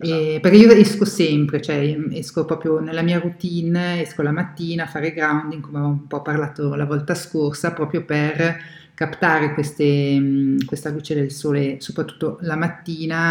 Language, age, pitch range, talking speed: Italian, 50-69, 150-180 Hz, 160 wpm